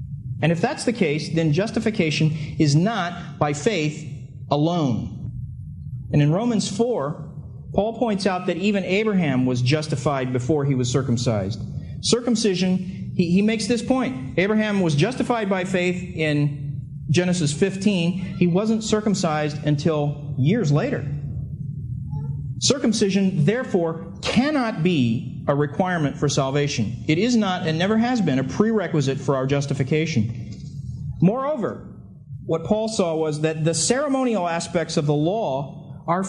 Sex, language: male, English